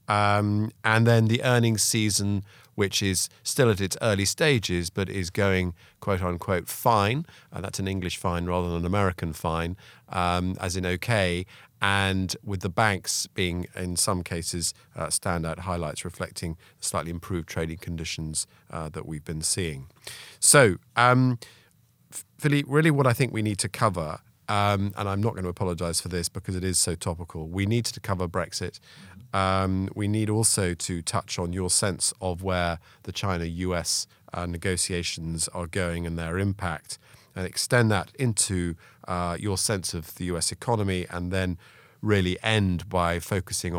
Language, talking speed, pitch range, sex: English, 165 wpm, 85-110 Hz, male